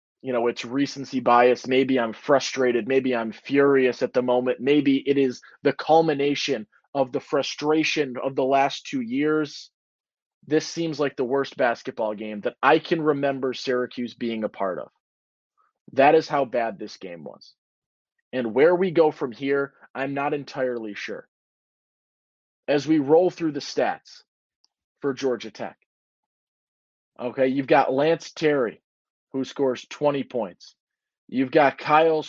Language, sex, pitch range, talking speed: English, male, 130-165 Hz, 150 wpm